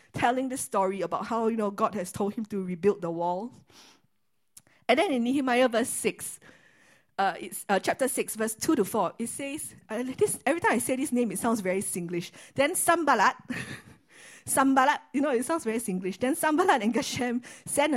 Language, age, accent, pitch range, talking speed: English, 50-69, Malaysian, 190-255 Hz, 190 wpm